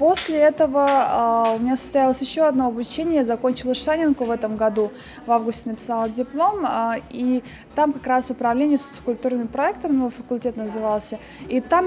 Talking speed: 150 wpm